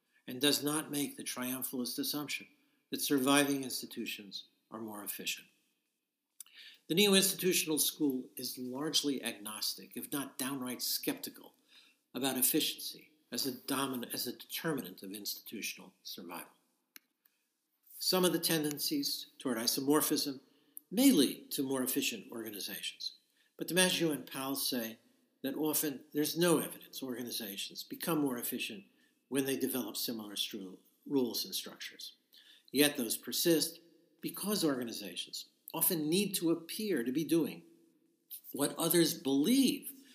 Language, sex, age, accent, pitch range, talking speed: English, male, 60-79, American, 135-190 Hz, 125 wpm